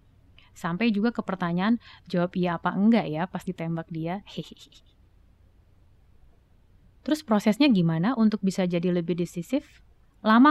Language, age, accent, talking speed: Indonesian, 20-39, native, 125 wpm